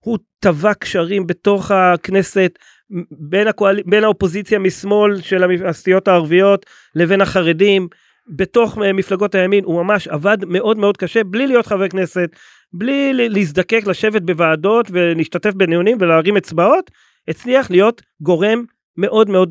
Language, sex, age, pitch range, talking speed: Hebrew, male, 30-49, 180-215 Hz, 125 wpm